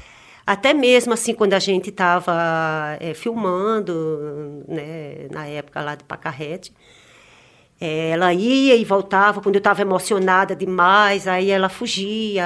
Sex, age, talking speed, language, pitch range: female, 40-59, 135 wpm, Portuguese, 180-215 Hz